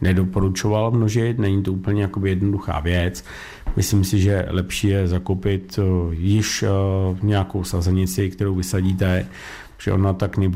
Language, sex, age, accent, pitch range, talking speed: Czech, male, 50-69, native, 90-105 Hz, 120 wpm